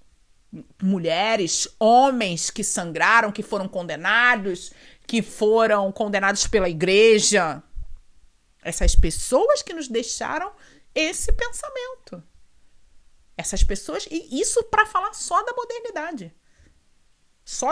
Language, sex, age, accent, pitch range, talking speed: Portuguese, female, 40-59, Brazilian, 205-345 Hz, 100 wpm